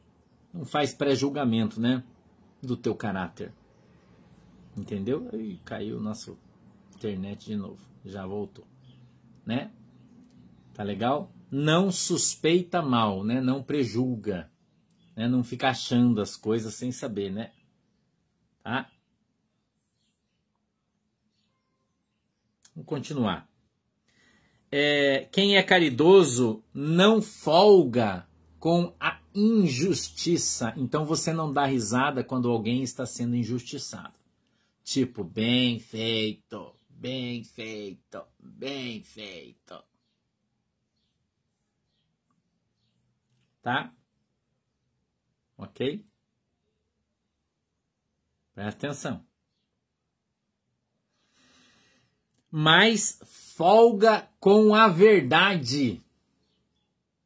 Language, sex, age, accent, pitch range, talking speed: Portuguese, male, 50-69, Brazilian, 110-160 Hz, 75 wpm